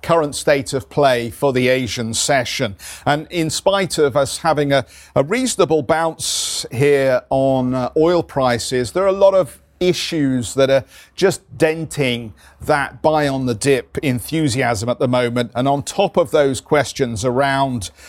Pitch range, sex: 120-150 Hz, male